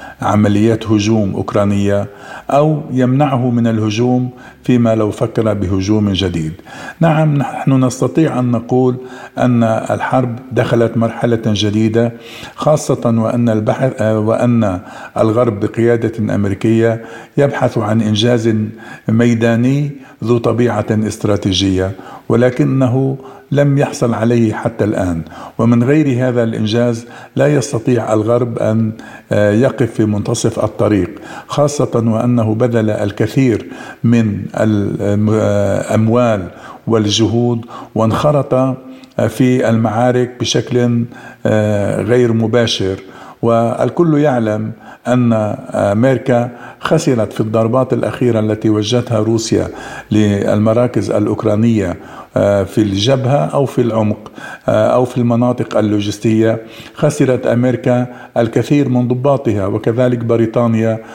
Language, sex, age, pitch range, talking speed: Arabic, male, 50-69, 110-125 Hz, 95 wpm